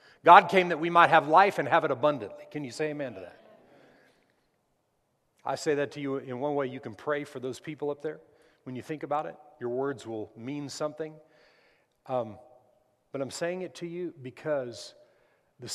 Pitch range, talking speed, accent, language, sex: 130-160 Hz, 200 wpm, American, English, male